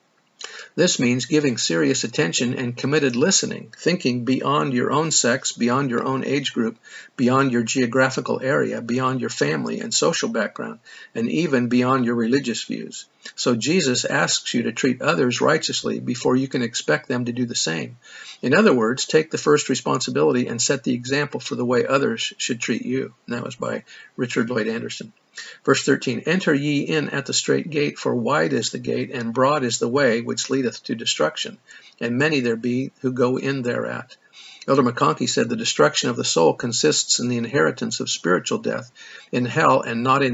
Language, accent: English, American